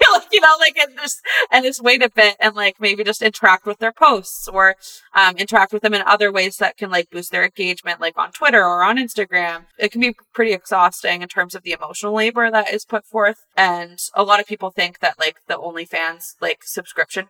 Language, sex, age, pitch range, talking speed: English, female, 20-39, 180-225 Hz, 220 wpm